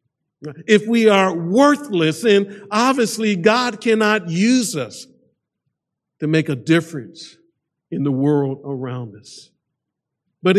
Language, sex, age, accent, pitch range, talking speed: English, male, 50-69, American, 145-200 Hz, 115 wpm